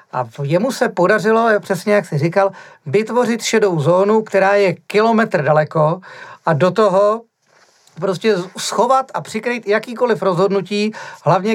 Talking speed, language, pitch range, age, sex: 130 wpm, Czech, 180-225 Hz, 40-59, male